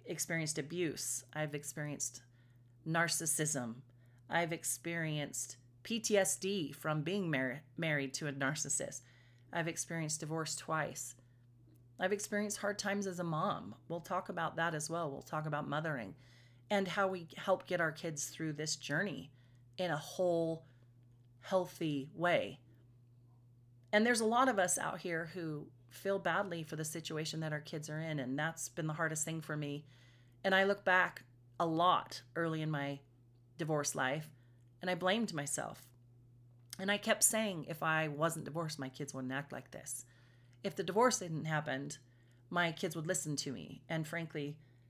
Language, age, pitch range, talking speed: English, 30-49, 125-170 Hz, 160 wpm